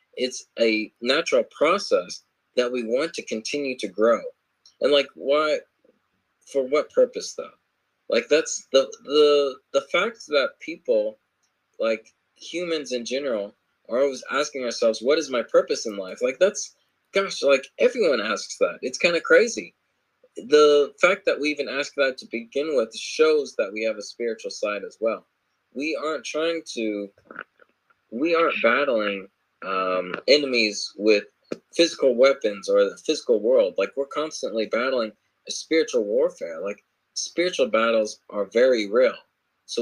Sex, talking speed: male, 150 wpm